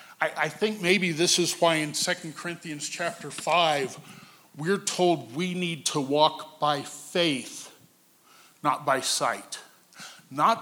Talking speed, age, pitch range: 130 wpm, 50-69, 155-190 Hz